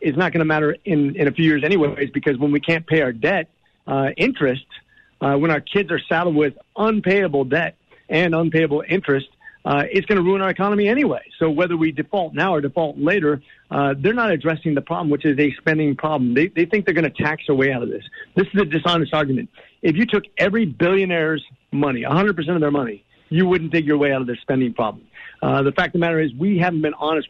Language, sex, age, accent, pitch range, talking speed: English, male, 50-69, American, 145-185 Hz, 235 wpm